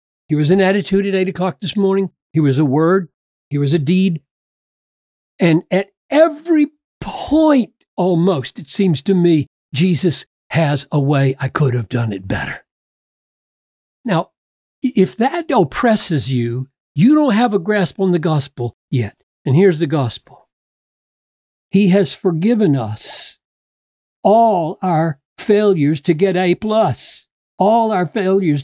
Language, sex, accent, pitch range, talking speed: English, male, American, 165-220 Hz, 145 wpm